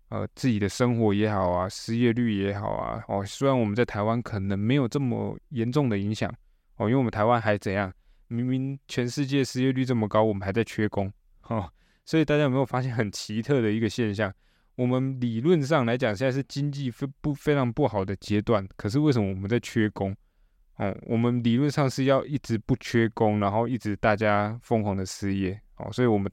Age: 20-39